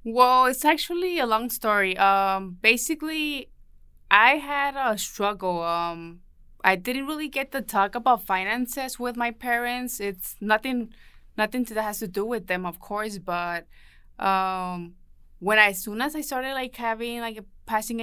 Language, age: English, 20-39